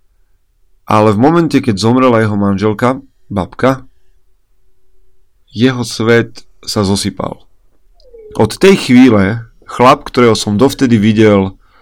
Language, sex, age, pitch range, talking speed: Slovak, male, 40-59, 95-115 Hz, 100 wpm